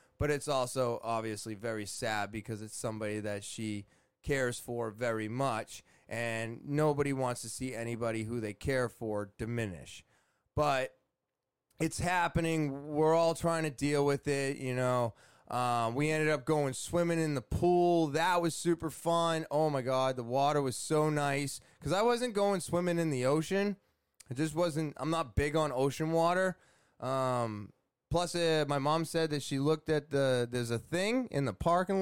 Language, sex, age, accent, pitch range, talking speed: English, male, 20-39, American, 115-155 Hz, 175 wpm